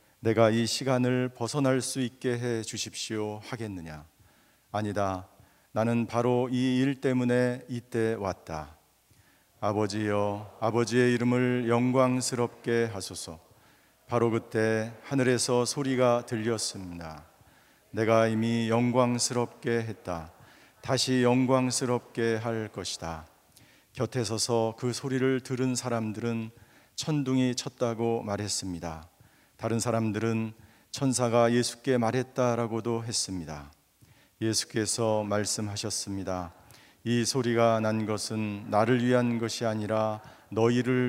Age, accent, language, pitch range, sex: 40-59, native, Korean, 105-125 Hz, male